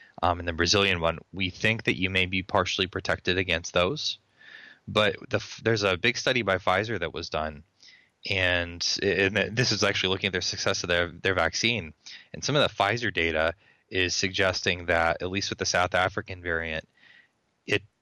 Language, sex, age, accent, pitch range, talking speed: English, male, 20-39, American, 90-105 Hz, 185 wpm